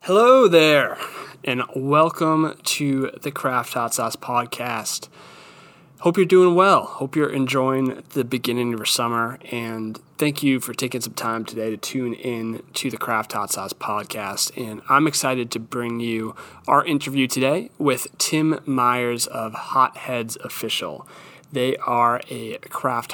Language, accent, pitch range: English, American, 115-135 Hz